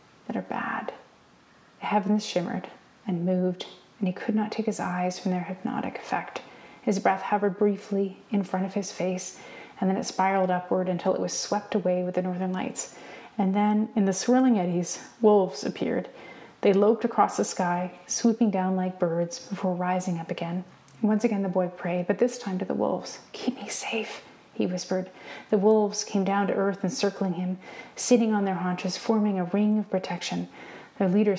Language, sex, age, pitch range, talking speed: English, female, 30-49, 180-215 Hz, 185 wpm